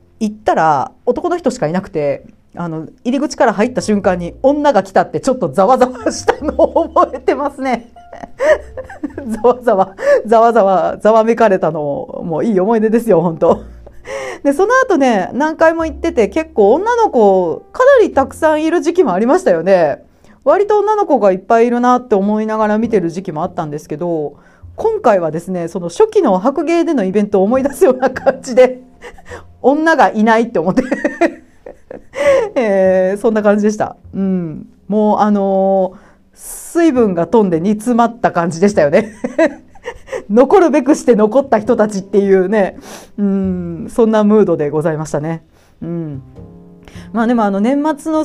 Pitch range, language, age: 190-285 Hz, Japanese, 40-59